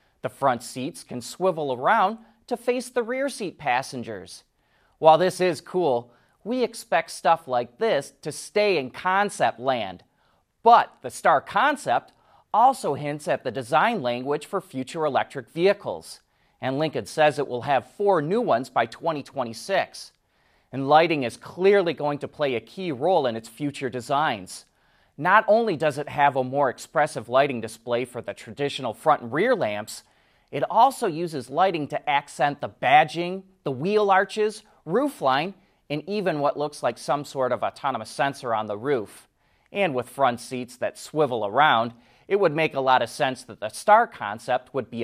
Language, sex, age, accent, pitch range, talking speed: English, male, 30-49, American, 130-190 Hz, 170 wpm